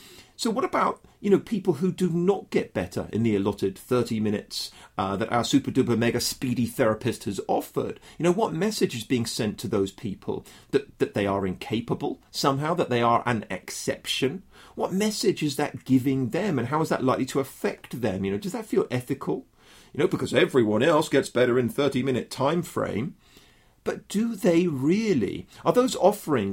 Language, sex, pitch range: English, male, 110-155 Hz